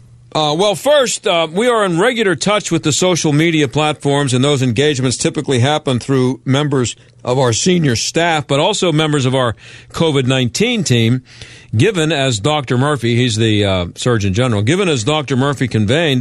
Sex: male